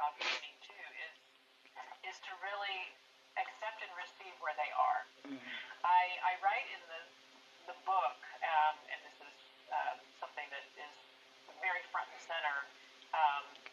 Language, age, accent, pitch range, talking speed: English, 40-59, American, 130-160 Hz, 135 wpm